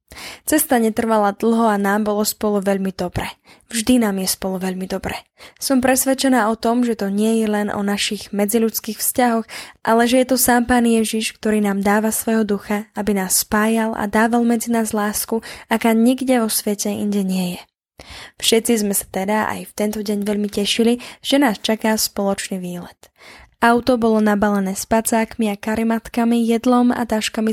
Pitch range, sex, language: 205-230 Hz, female, Slovak